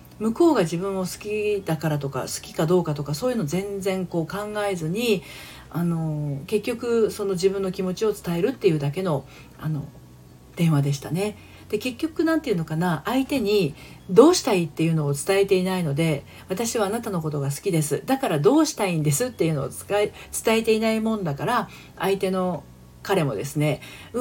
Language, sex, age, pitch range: Japanese, female, 40-59, 145-205 Hz